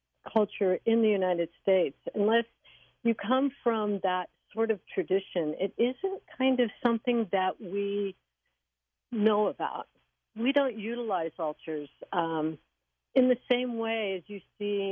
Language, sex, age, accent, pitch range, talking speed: English, female, 60-79, American, 170-225 Hz, 135 wpm